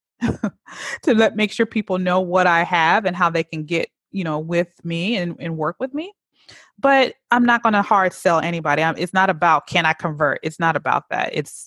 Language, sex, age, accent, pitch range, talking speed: English, female, 30-49, American, 155-185 Hz, 220 wpm